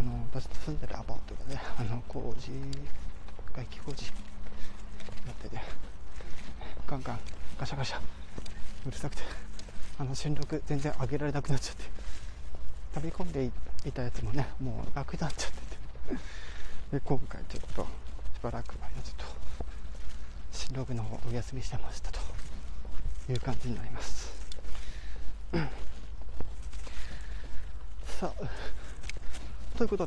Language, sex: Japanese, male